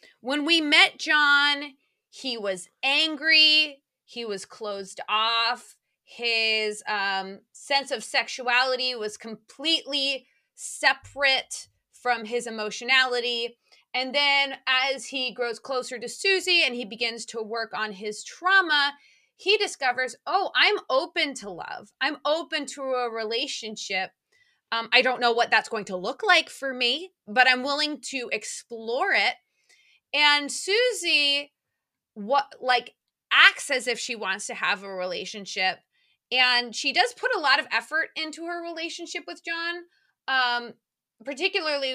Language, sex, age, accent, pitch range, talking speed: English, female, 20-39, American, 235-315 Hz, 135 wpm